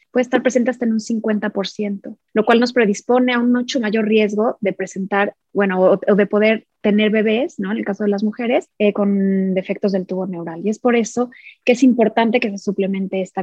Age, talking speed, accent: 20-39, 220 wpm, Mexican